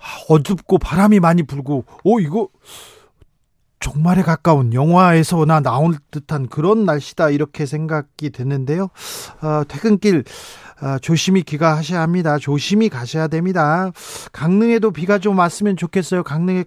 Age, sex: 40-59, male